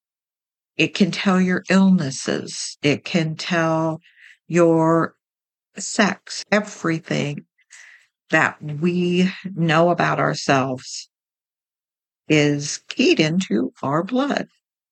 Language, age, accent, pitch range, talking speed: English, 60-79, American, 155-195 Hz, 85 wpm